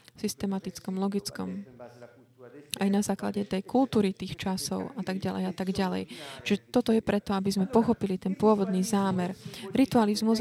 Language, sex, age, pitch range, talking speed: Slovak, female, 30-49, 200-240 Hz, 150 wpm